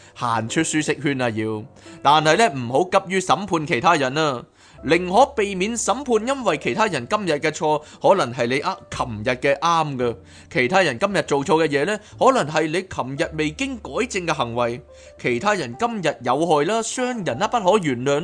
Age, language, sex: 20-39, Chinese, male